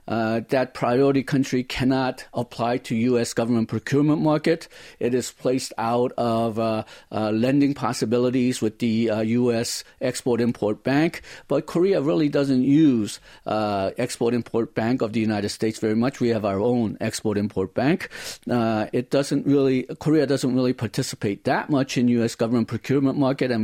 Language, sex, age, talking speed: English, male, 50-69, 165 wpm